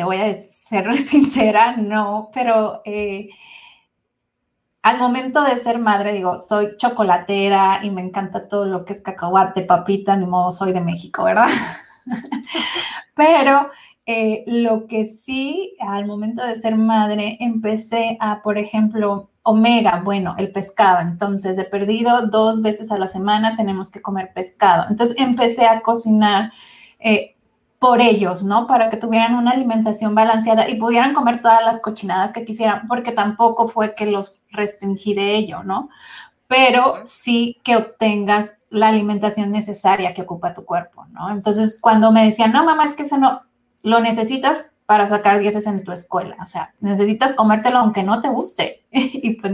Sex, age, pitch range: female, 30-49, 200-235 Hz